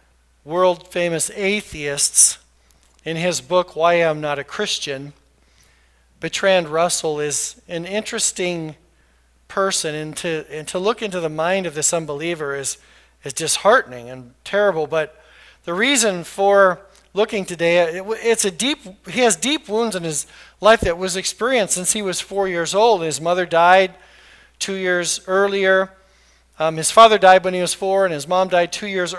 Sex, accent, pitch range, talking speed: male, American, 160-220 Hz, 160 wpm